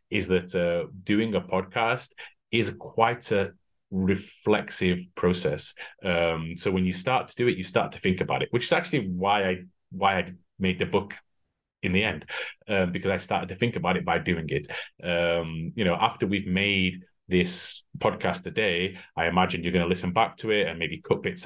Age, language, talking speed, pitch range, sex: 30-49, English, 200 wpm, 90-115 Hz, male